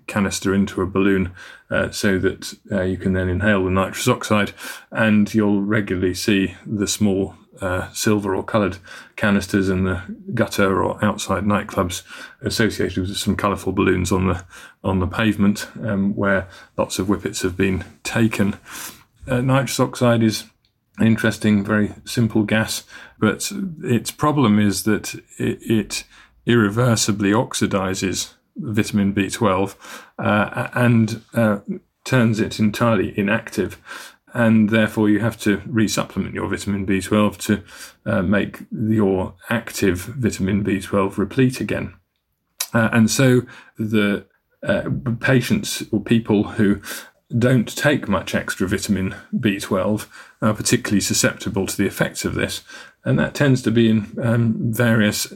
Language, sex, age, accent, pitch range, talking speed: English, male, 30-49, British, 100-115 Hz, 135 wpm